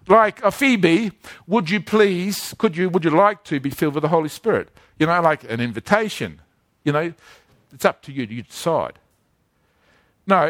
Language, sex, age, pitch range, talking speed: English, male, 50-69, 170-235 Hz, 185 wpm